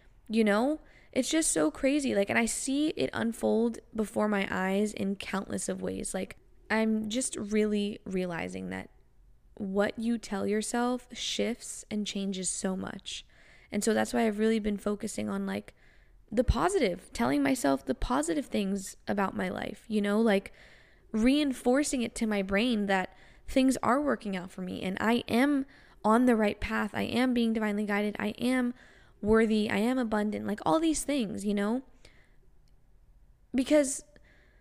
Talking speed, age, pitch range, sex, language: 165 wpm, 10-29, 200-250 Hz, female, English